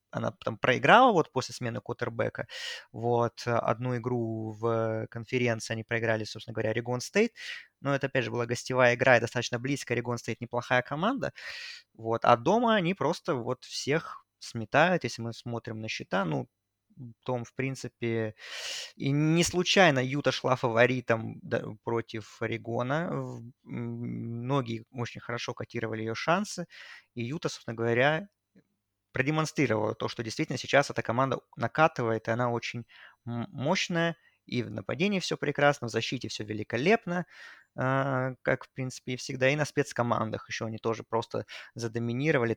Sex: male